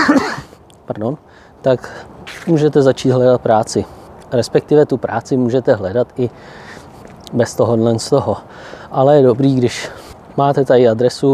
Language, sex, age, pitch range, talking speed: Czech, male, 20-39, 125-150 Hz, 120 wpm